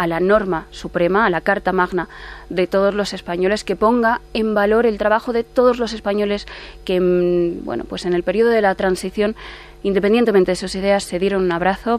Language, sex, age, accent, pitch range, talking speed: Spanish, female, 20-39, Spanish, 175-200 Hz, 195 wpm